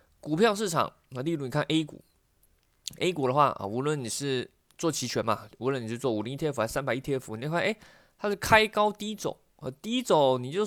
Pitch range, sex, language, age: 120-170 Hz, male, Chinese, 20-39